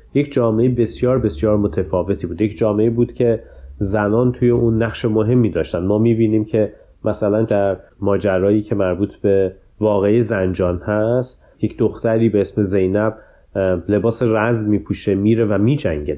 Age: 30-49